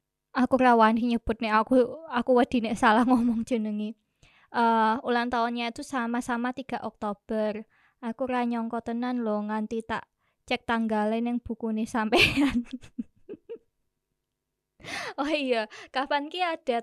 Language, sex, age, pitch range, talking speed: Indonesian, female, 20-39, 230-275 Hz, 120 wpm